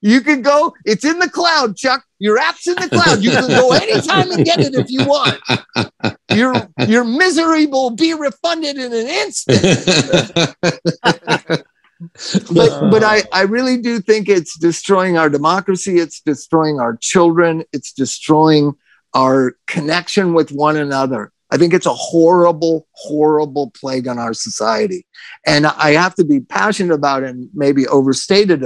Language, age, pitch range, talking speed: English, 50-69, 155-210 Hz, 155 wpm